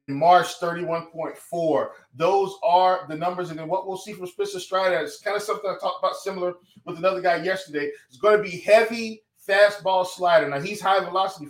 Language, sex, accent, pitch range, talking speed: English, male, American, 155-200 Hz, 195 wpm